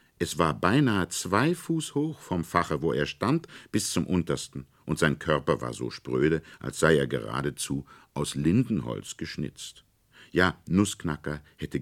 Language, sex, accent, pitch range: German, male, German, 75-115 Hz